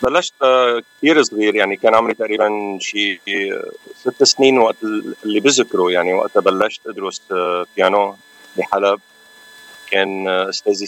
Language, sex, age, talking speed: Arabic, male, 40-59, 115 wpm